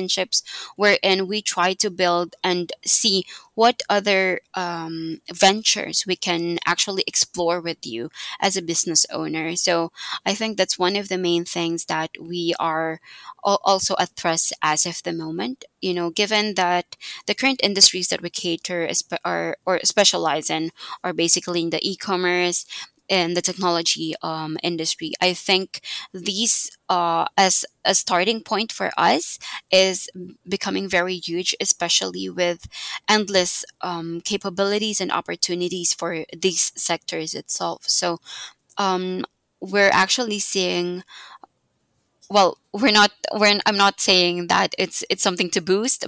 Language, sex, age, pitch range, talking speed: English, female, 20-39, 170-195 Hz, 140 wpm